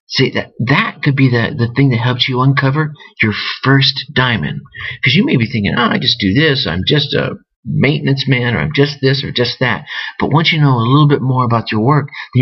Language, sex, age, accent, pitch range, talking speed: English, male, 50-69, American, 120-150 Hz, 235 wpm